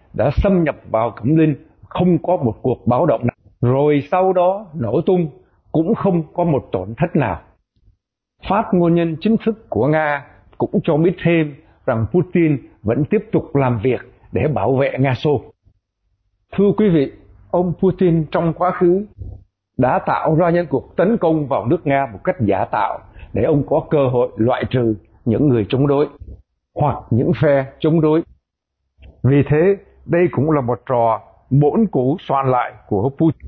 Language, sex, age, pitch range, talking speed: Vietnamese, male, 60-79, 115-170 Hz, 175 wpm